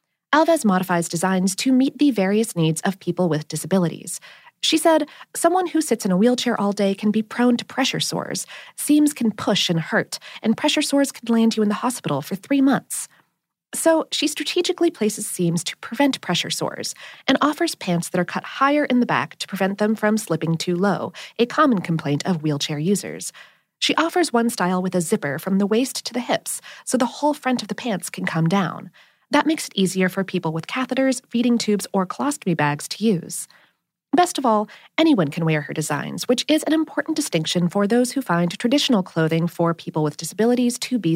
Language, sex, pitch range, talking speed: English, female, 175-265 Hz, 205 wpm